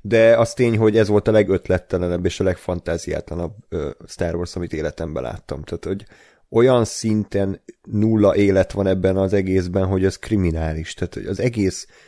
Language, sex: Hungarian, male